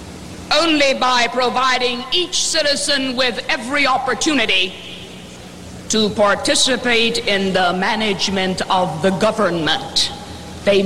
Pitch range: 230-300 Hz